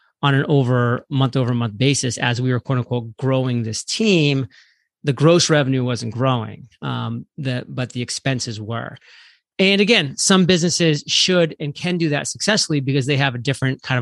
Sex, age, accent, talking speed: male, 30-49, American, 175 wpm